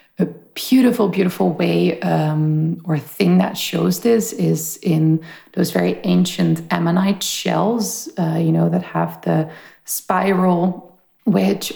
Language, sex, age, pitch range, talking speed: English, female, 30-49, 160-185 Hz, 130 wpm